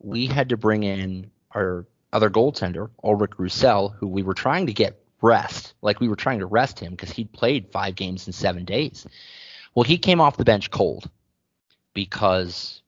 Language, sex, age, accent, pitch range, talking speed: English, male, 30-49, American, 95-115 Hz, 190 wpm